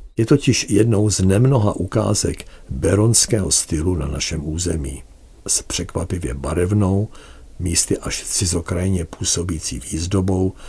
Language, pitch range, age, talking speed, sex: Czech, 75-100 Hz, 60-79, 105 wpm, male